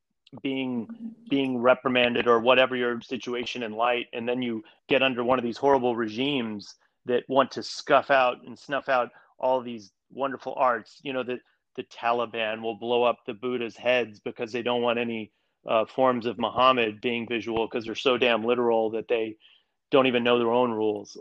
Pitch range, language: 120-135 Hz, English